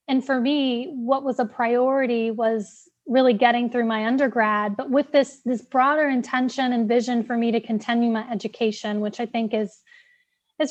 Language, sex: English, female